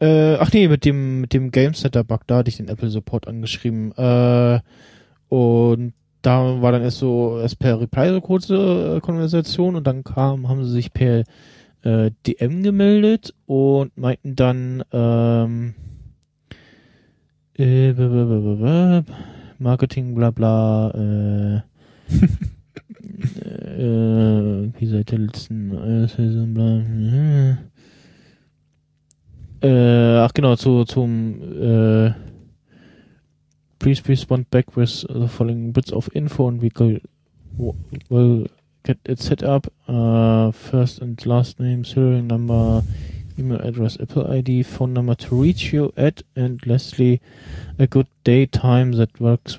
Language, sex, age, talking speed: German, male, 20-39, 115 wpm